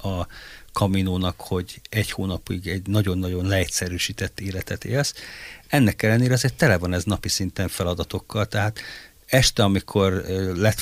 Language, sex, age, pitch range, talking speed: Hungarian, male, 50-69, 90-105 Hz, 135 wpm